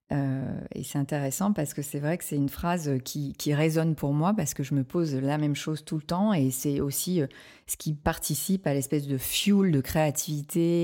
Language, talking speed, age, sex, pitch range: French, 220 wpm, 30-49, female, 145-180 Hz